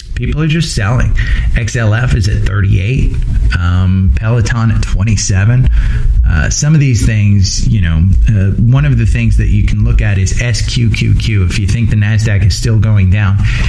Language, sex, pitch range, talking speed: English, male, 100-120 Hz, 175 wpm